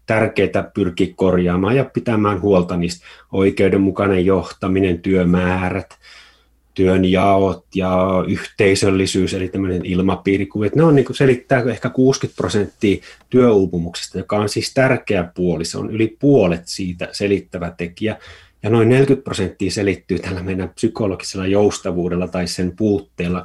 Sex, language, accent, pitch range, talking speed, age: male, Finnish, native, 90-110 Hz, 120 wpm, 30-49